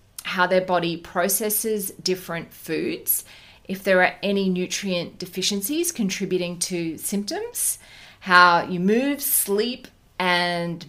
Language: English